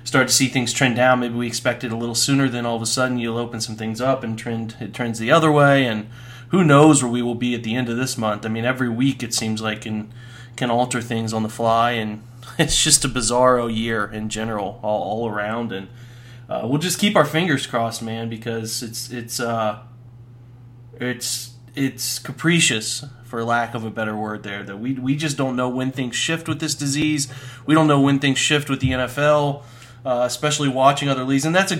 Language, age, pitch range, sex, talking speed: English, 20-39, 115-130 Hz, male, 225 wpm